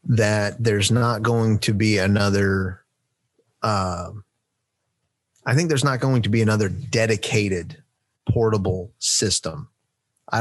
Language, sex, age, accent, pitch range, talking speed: English, male, 30-49, American, 105-125 Hz, 120 wpm